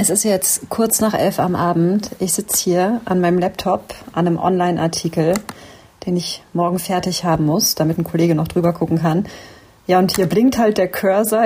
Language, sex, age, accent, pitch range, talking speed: German, female, 30-49, German, 160-205 Hz, 195 wpm